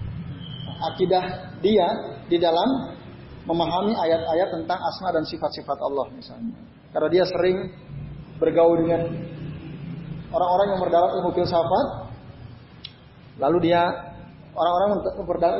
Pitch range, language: 125-175 Hz, Indonesian